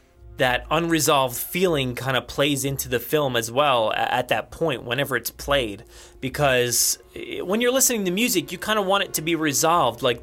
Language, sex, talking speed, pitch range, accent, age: English, male, 190 wpm, 125-170 Hz, American, 20-39